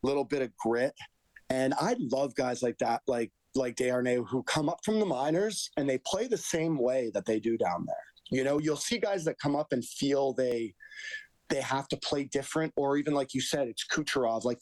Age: 30-49